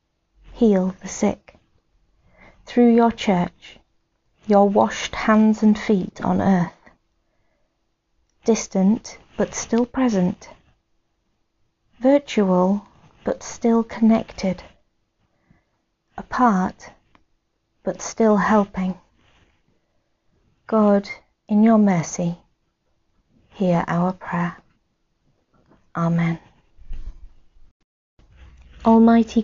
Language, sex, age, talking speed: English, female, 40-59, 70 wpm